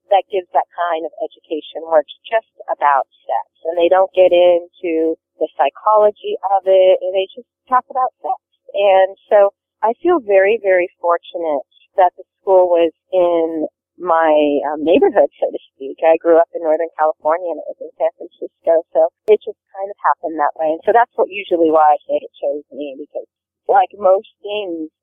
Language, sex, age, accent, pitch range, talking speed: English, female, 30-49, American, 165-210 Hz, 185 wpm